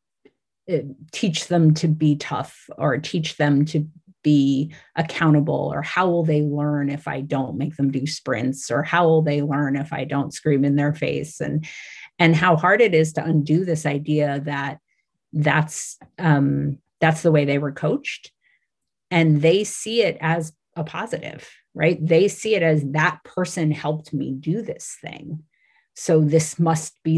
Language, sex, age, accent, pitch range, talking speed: English, female, 30-49, American, 145-170 Hz, 170 wpm